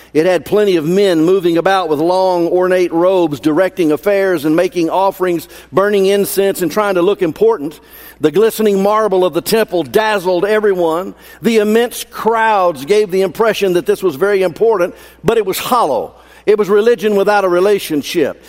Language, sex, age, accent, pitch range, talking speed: English, male, 50-69, American, 155-205 Hz, 170 wpm